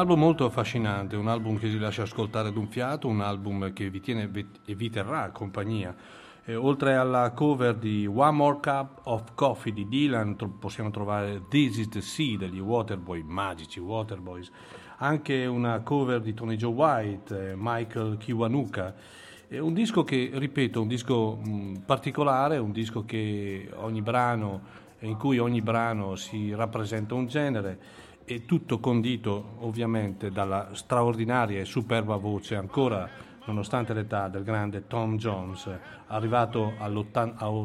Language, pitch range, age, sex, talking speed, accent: Italian, 105-125 Hz, 40-59, male, 145 wpm, native